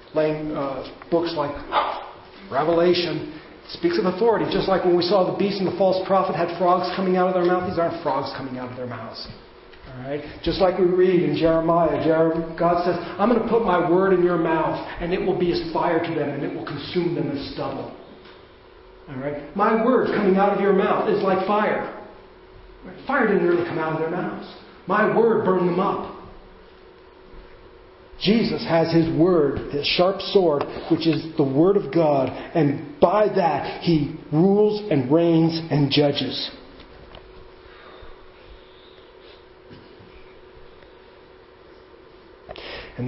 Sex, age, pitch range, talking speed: male, 40-59, 150-190 Hz, 160 wpm